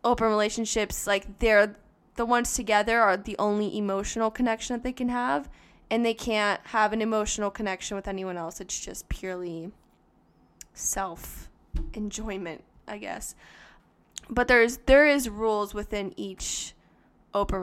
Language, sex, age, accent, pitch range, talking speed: English, female, 20-39, American, 200-250 Hz, 135 wpm